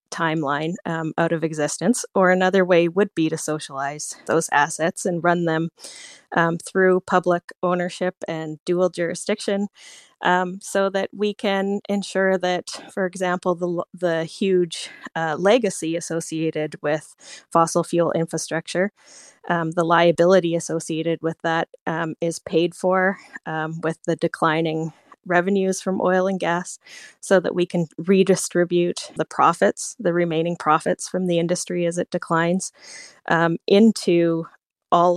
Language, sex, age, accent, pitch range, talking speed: English, female, 20-39, American, 165-185 Hz, 140 wpm